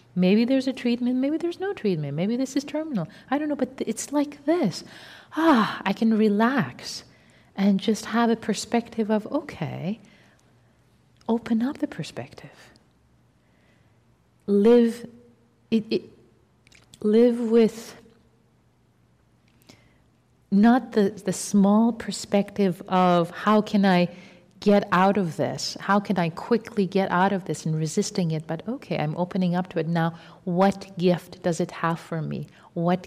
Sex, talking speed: female, 145 wpm